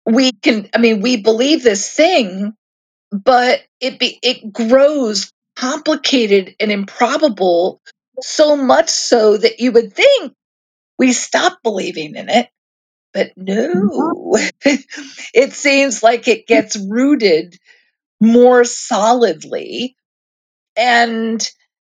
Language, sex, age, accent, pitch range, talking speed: English, female, 50-69, American, 205-275 Hz, 105 wpm